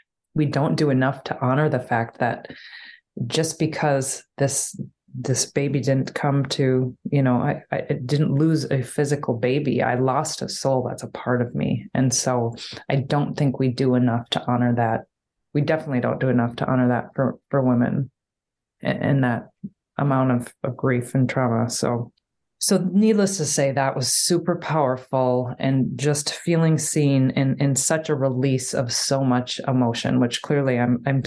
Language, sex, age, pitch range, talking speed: English, female, 20-39, 125-150 Hz, 175 wpm